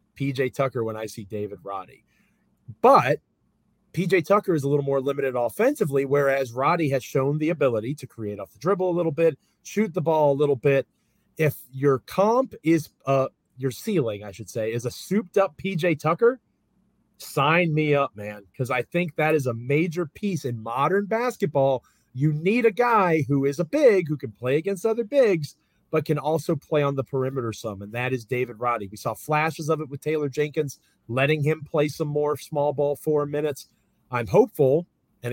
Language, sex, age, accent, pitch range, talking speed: English, male, 30-49, American, 130-175 Hz, 195 wpm